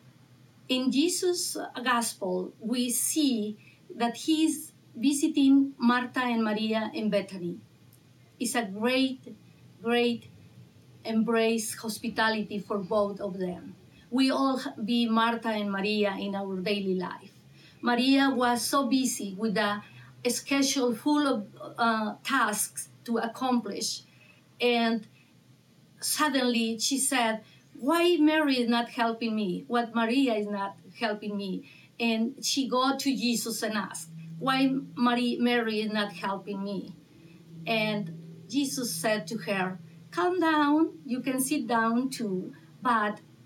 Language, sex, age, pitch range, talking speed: English, female, 30-49, 200-255 Hz, 120 wpm